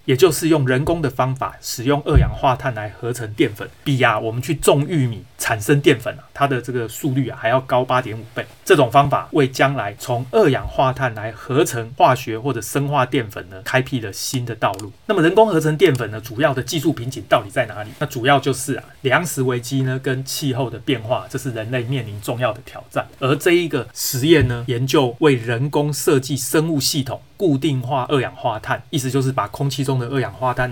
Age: 30-49